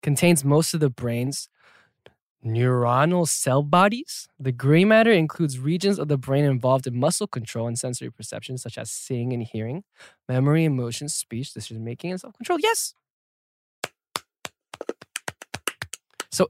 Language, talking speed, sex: English, 140 wpm, male